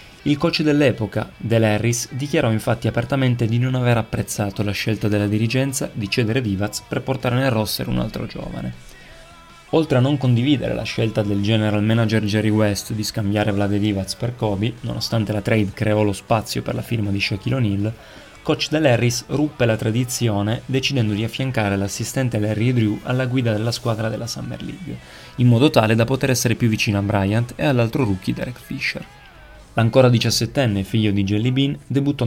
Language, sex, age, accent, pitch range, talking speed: Italian, male, 30-49, native, 105-125 Hz, 175 wpm